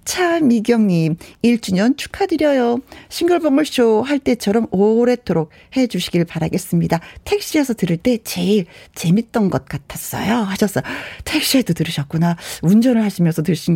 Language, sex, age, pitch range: Korean, female, 40-59, 190-275 Hz